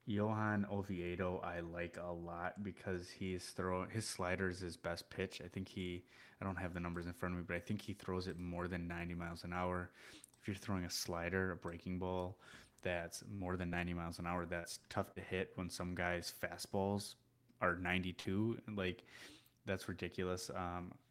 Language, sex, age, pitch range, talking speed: English, male, 20-39, 90-100 Hz, 195 wpm